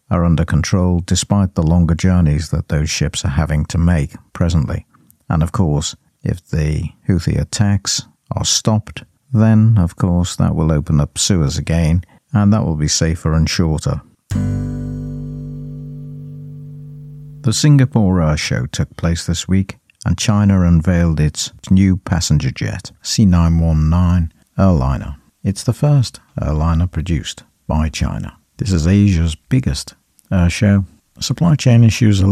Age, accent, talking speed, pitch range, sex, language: 60-79, British, 135 wpm, 80-105 Hz, male, English